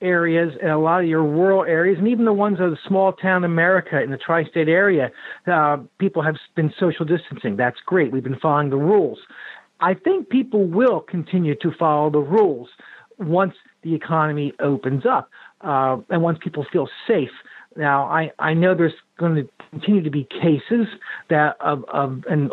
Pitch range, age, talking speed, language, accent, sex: 155-190 Hz, 50-69, 185 wpm, English, American, male